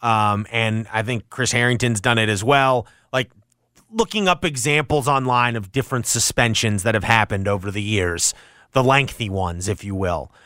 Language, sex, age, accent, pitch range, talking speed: English, male, 30-49, American, 115-155 Hz, 170 wpm